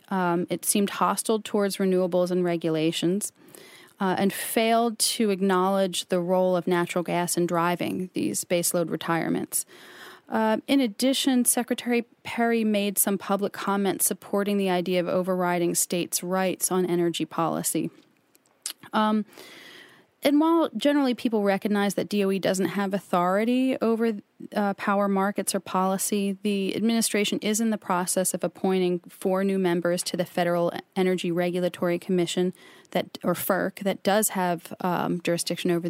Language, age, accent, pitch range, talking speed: English, 30-49, American, 180-220 Hz, 140 wpm